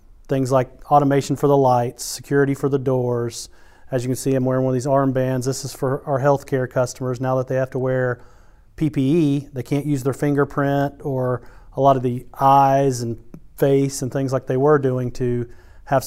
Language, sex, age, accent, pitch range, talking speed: English, male, 30-49, American, 120-135 Hz, 200 wpm